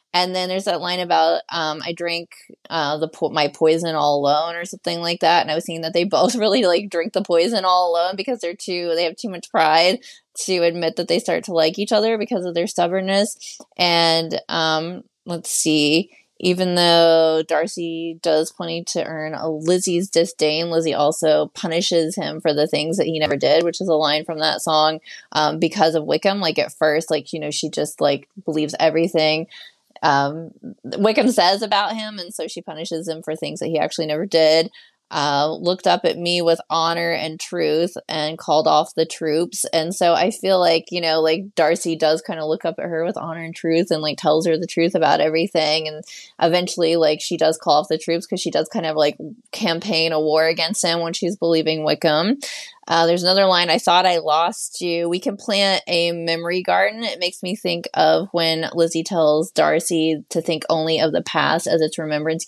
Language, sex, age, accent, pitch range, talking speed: English, female, 20-39, American, 160-175 Hz, 210 wpm